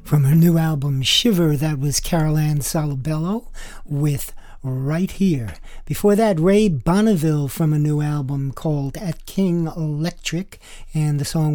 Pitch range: 145-175 Hz